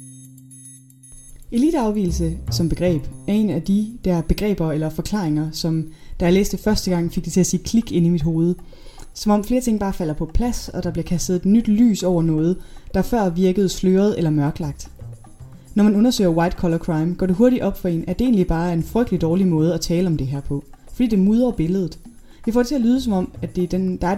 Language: Danish